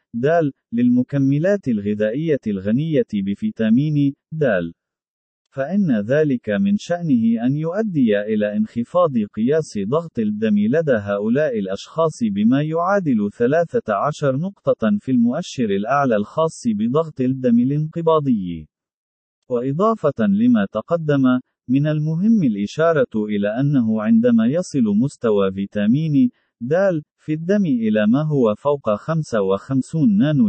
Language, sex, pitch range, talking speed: Arabic, male, 130-210 Hz, 100 wpm